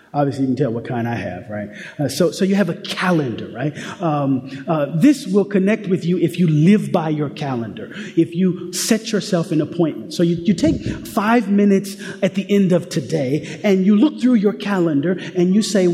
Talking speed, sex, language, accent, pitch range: 210 wpm, male, English, American, 150-195 Hz